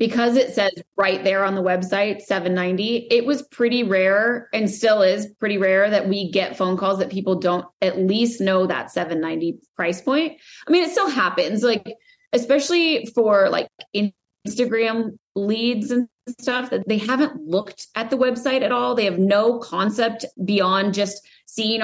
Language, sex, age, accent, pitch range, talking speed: English, female, 20-39, American, 195-245 Hz, 170 wpm